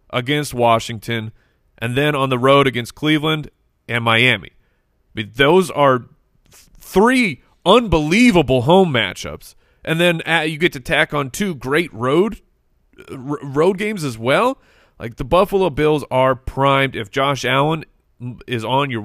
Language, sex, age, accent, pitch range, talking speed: English, male, 30-49, American, 120-155 Hz, 135 wpm